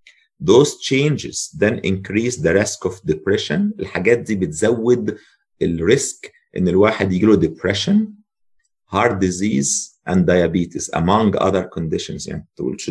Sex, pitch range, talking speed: male, 90-130 Hz, 125 wpm